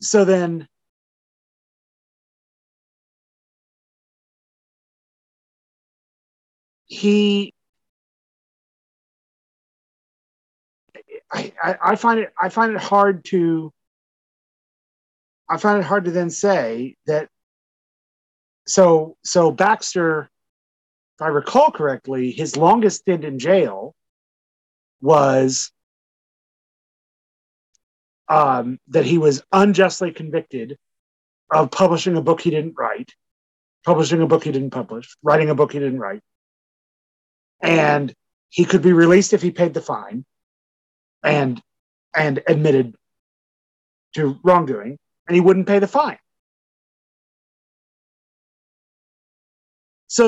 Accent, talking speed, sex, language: American, 95 wpm, male, English